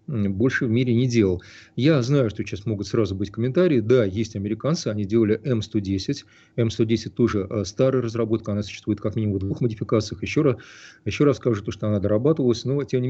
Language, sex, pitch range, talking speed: Russian, male, 105-125 Hz, 185 wpm